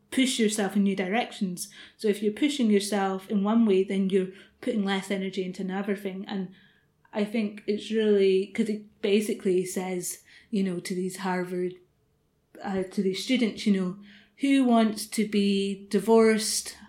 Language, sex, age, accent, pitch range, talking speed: English, female, 30-49, British, 195-220 Hz, 165 wpm